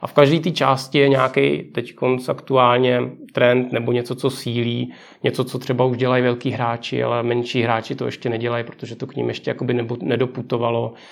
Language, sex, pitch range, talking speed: Czech, male, 120-135 Hz, 185 wpm